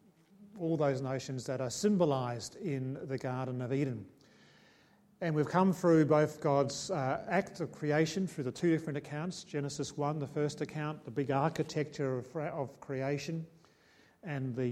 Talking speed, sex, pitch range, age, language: 155 wpm, male, 135-160 Hz, 40-59, English